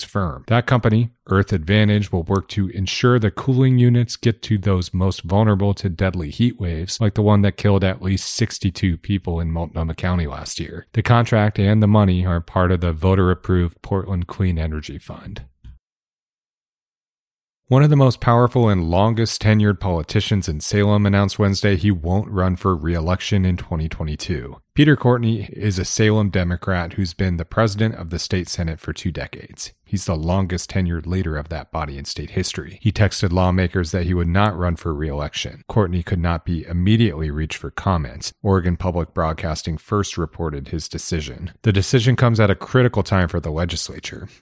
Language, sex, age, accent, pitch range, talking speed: English, male, 30-49, American, 85-105 Hz, 175 wpm